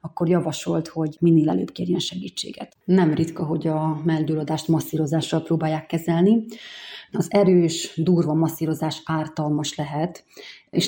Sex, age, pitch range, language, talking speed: female, 30-49, 155-175 Hz, Hungarian, 120 wpm